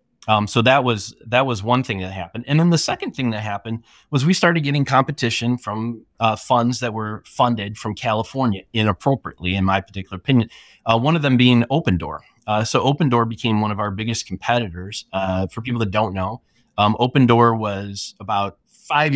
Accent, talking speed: American, 195 wpm